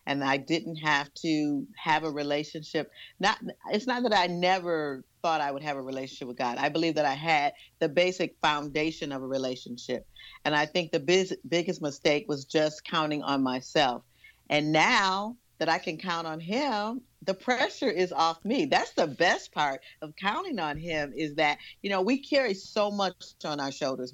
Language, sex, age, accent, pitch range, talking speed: English, female, 40-59, American, 145-200 Hz, 190 wpm